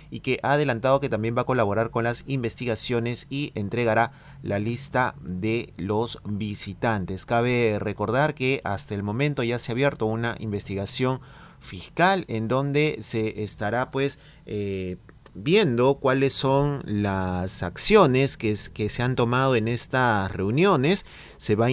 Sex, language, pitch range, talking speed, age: male, Spanish, 105-135 Hz, 150 wpm, 30-49